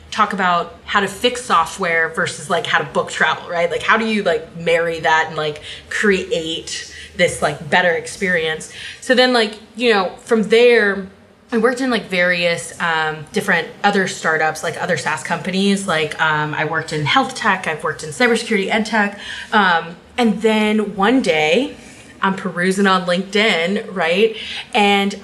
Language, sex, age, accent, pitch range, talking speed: English, female, 20-39, American, 175-230 Hz, 170 wpm